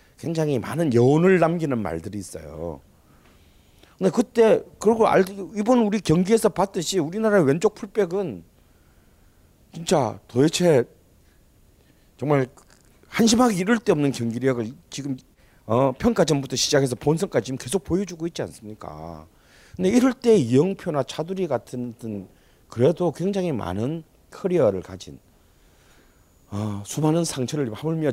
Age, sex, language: 40-59, male, Korean